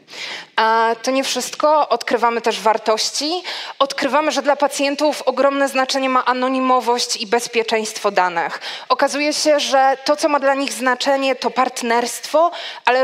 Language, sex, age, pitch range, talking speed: Polish, female, 20-39, 225-275 Hz, 135 wpm